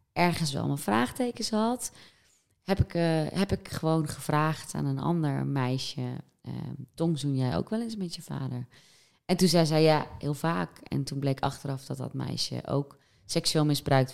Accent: Dutch